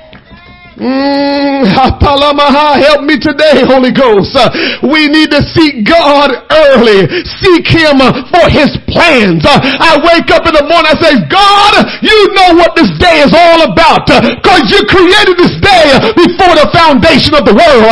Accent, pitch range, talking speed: American, 255-350 Hz, 165 wpm